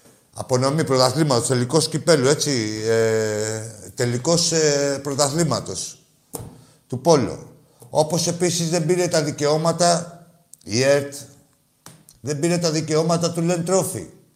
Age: 50-69